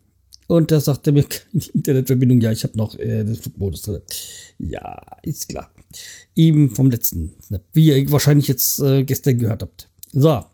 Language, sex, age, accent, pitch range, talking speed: German, male, 50-69, German, 105-160 Hz, 170 wpm